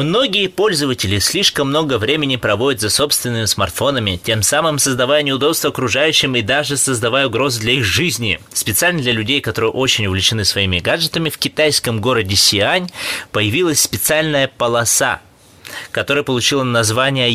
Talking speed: 135 wpm